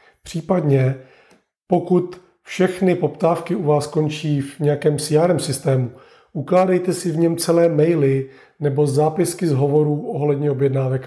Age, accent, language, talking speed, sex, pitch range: 30-49, native, Czech, 125 wpm, male, 140-170 Hz